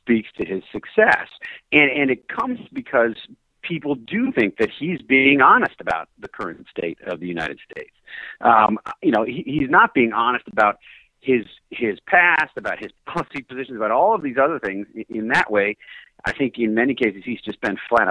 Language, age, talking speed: English, 40-59, 190 wpm